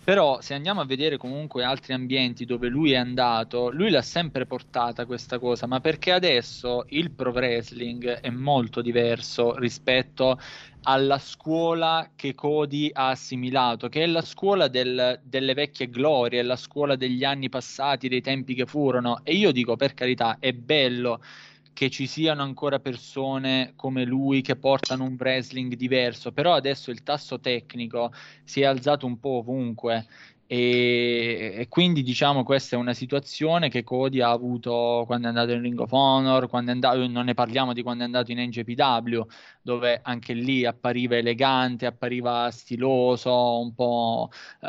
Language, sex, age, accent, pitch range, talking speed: Italian, male, 20-39, native, 120-140 Hz, 160 wpm